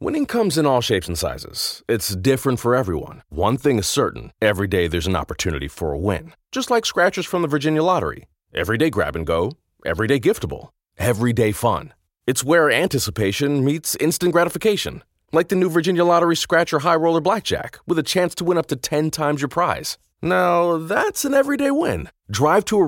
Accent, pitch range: American, 120-175 Hz